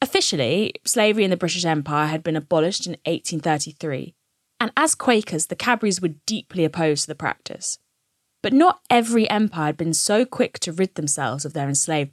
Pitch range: 150-200 Hz